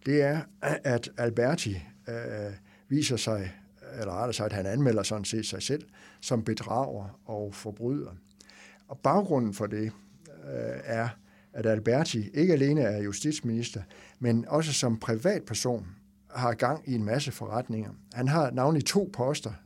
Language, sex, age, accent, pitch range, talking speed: English, male, 60-79, Danish, 105-135 Hz, 150 wpm